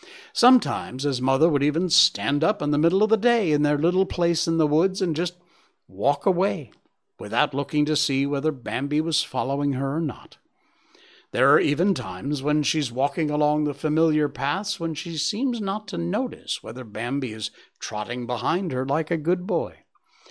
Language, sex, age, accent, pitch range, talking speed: English, male, 60-79, American, 130-170 Hz, 185 wpm